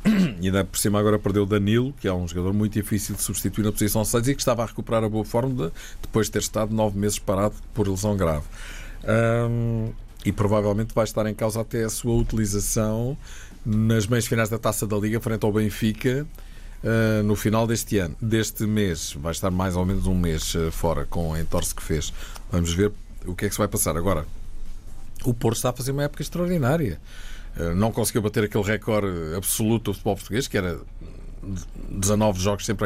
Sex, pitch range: male, 100-125 Hz